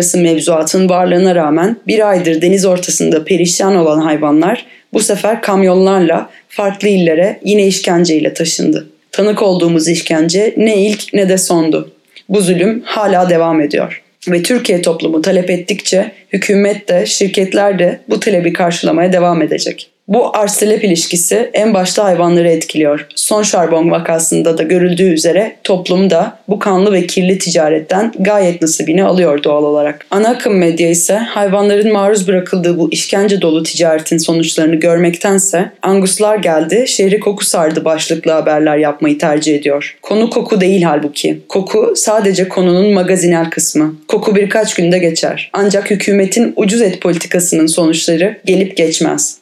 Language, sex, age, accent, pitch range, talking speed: Turkish, female, 30-49, native, 165-200 Hz, 140 wpm